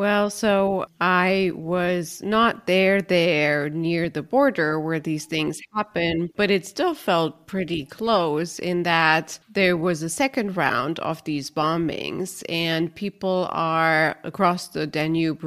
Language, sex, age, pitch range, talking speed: English, female, 30-49, 160-185 Hz, 140 wpm